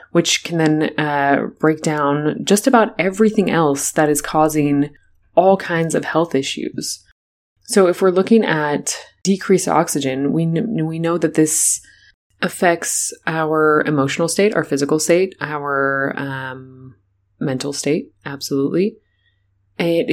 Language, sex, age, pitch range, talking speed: English, female, 20-39, 140-170 Hz, 130 wpm